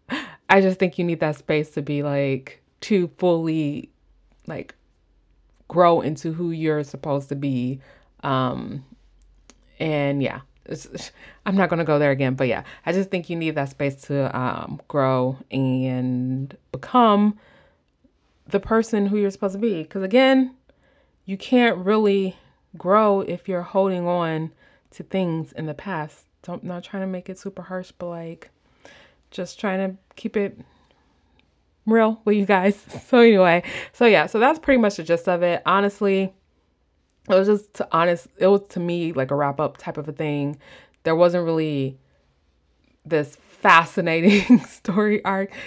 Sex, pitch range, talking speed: female, 140-190 Hz, 160 wpm